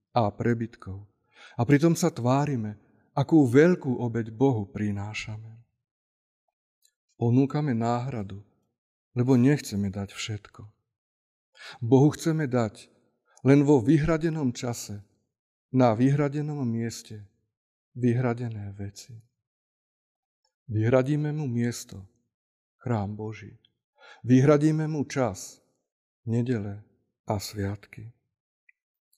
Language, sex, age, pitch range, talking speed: Slovak, male, 50-69, 105-135 Hz, 80 wpm